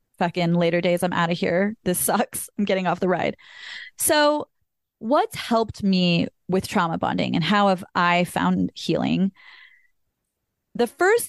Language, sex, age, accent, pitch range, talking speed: English, female, 20-39, American, 185-250 Hz, 155 wpm